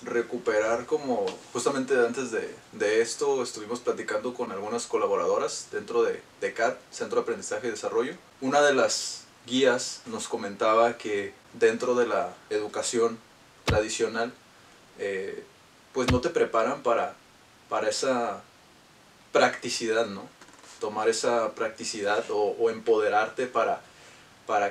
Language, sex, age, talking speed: Spanish, male, 20-39, 125 wpm